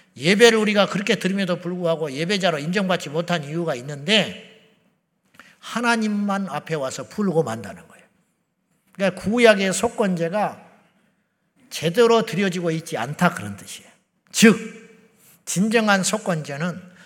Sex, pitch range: male, 175-230 Hz